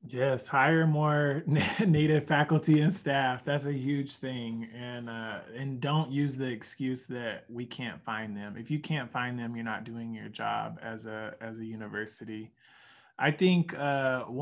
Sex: male